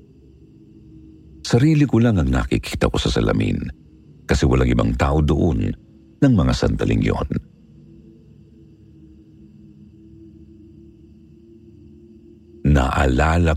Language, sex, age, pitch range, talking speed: Filipino, male, 50-69, 70-95 Hz, 80 wpm